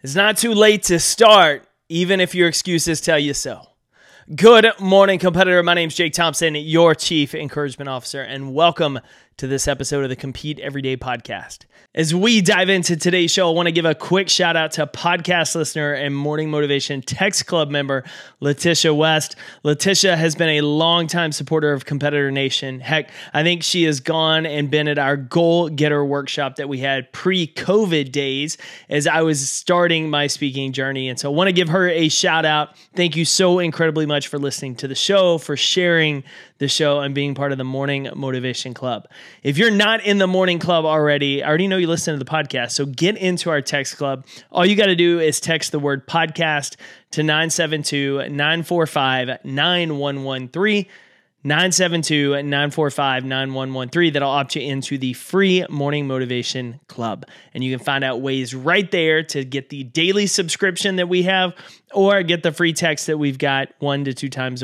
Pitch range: 140-175 Hz